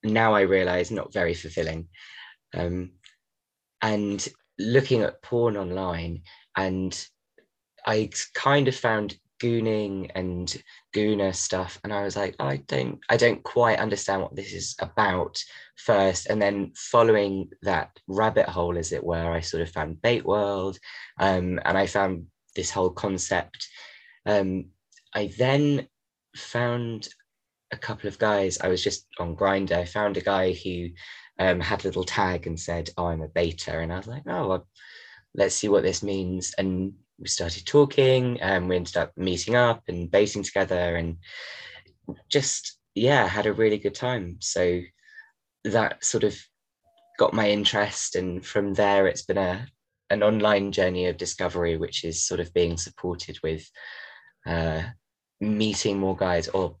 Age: 20-39